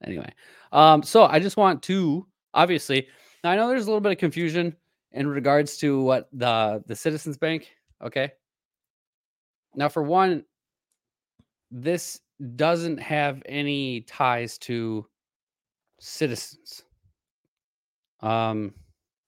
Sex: male